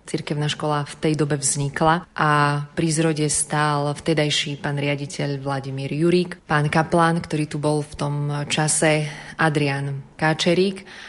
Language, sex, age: Slovak, female, 30-49